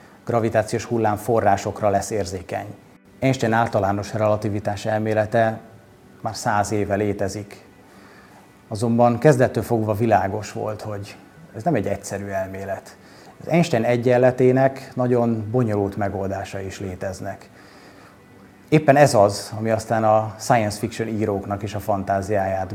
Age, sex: 30-49, male